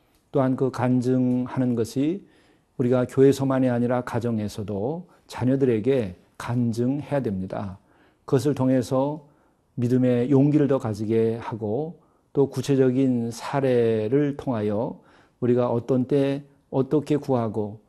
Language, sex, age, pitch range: Korean, male, 40-59, 115-135 Hz